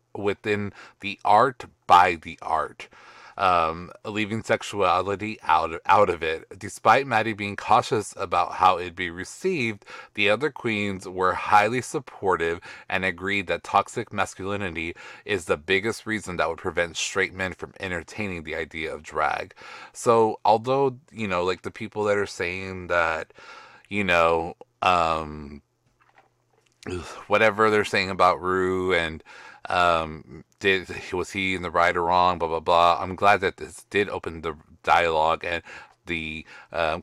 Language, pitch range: English, 90-110 Hz